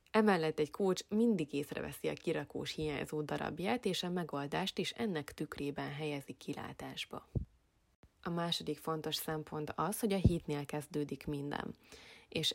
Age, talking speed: 20-39, 135 wpm